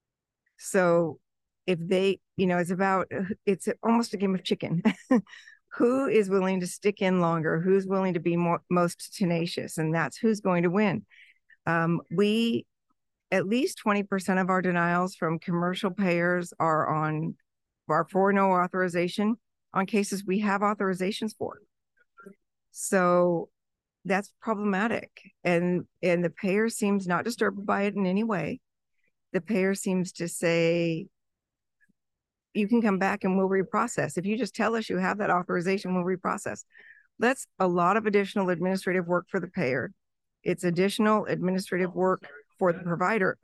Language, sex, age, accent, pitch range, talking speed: English, female, 50-69, American, 175-210 Hz, 150 wpm